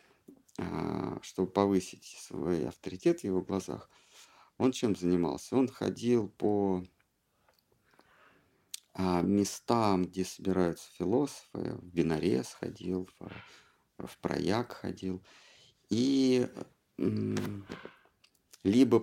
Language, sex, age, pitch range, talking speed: Russian, male, 50-69, 90-110 Hz, 80 wpm